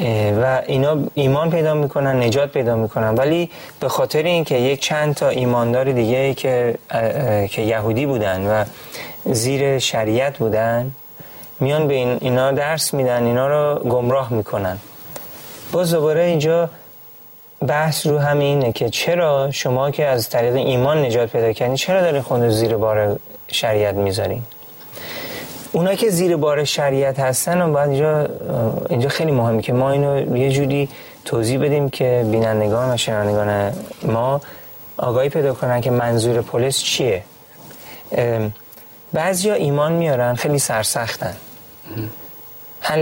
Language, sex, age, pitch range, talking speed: Persian, male, 30-49, 115-145 Hz, 135 wpm